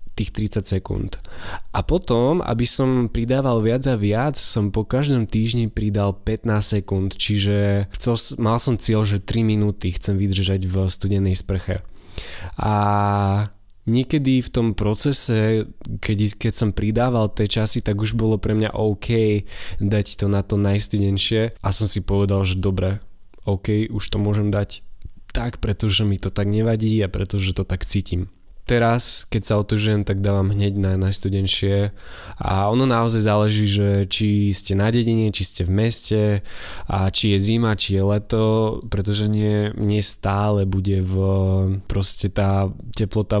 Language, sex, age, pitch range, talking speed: Slovak, male, 20-39, 100-115 Hz, 155 wpm